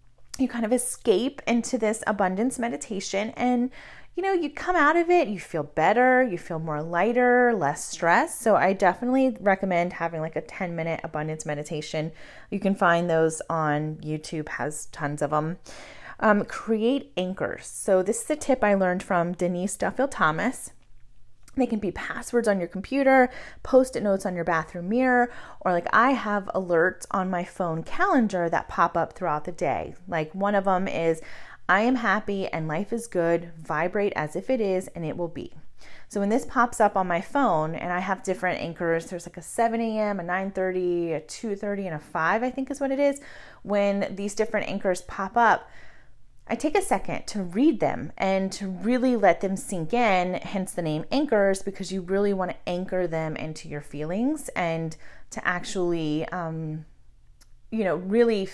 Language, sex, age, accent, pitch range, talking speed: English, female, 30-49, American, 165-230 Hz, 185 wpm